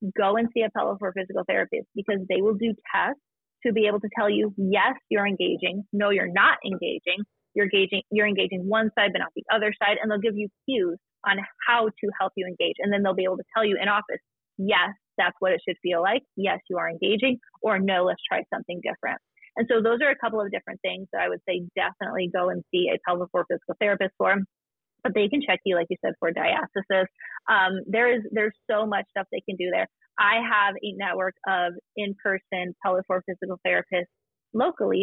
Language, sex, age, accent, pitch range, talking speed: English, female, 30-49, American, 190-235 Hz, 220 wpm